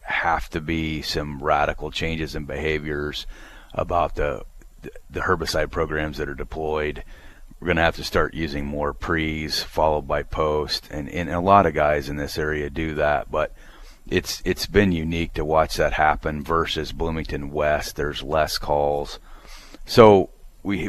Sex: male